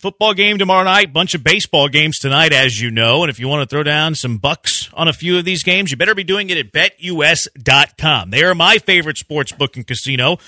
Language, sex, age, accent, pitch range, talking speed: English, male, 40-59, American, 140-190 Hz, 245 wpm